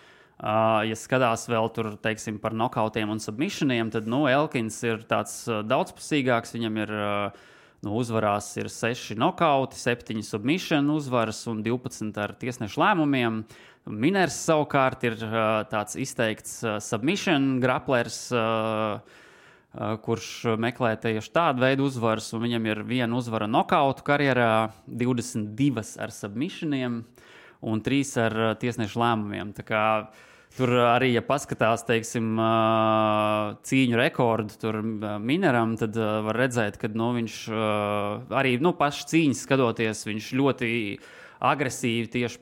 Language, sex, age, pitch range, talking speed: English, male, 20-39, 110-125 Hz, 125 wpm